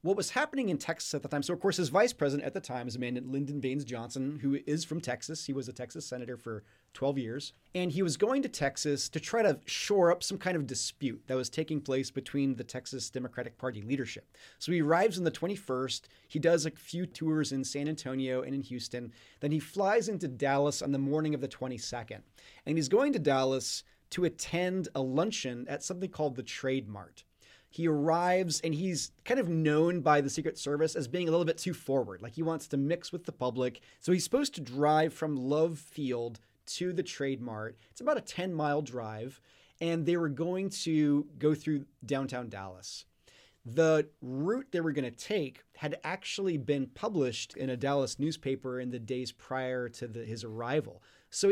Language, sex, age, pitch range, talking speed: English, male, 30-49, 125-165 Hz, 205 wpm